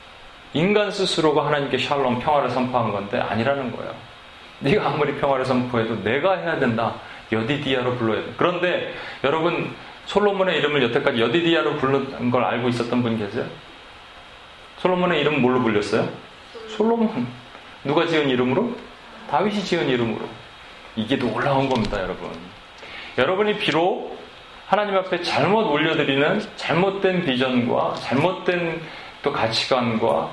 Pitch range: 115-160 Hz